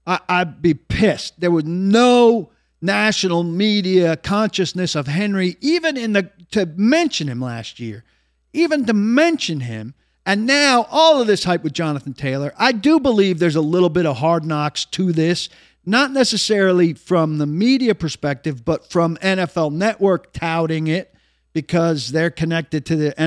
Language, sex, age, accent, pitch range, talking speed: English, male, 50-69, American, 155-215 Hz, 155 wpm